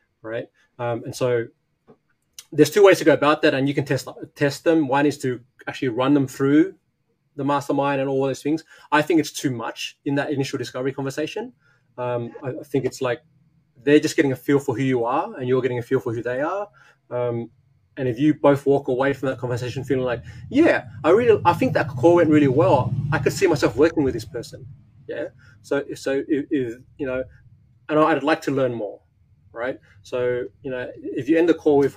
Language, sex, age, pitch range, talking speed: English, male, 20-39, 125-150 Hz, 220 wpm